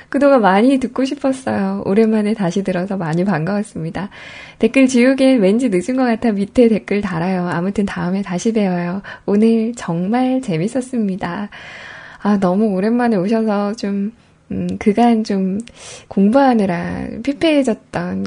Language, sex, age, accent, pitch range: Korean, female, 20-39, native, 195-260 Hz